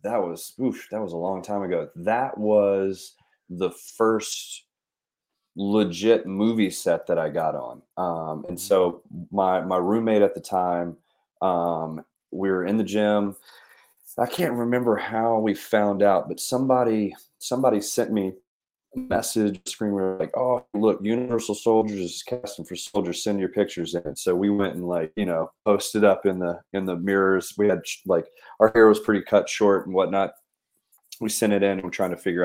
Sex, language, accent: male, English, American